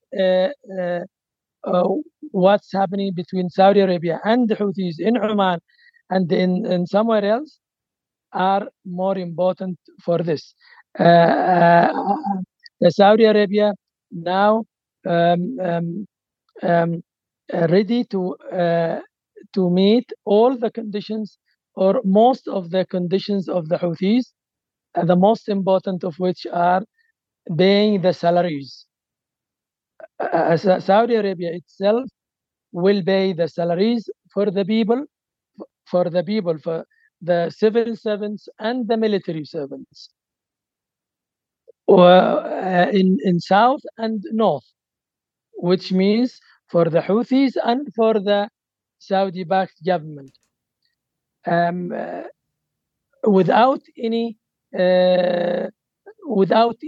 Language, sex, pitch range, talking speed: English, male, 180-220 Hz, 100 wpm